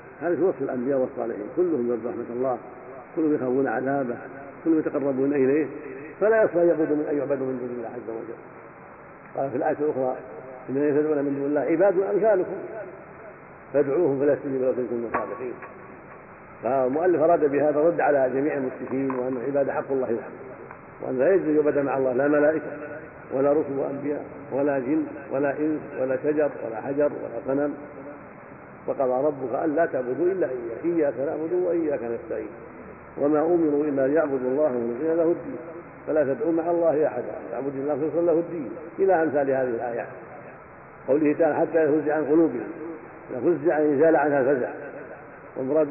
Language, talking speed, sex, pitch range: Arabic, 155 wpm, male, 130-160 Hz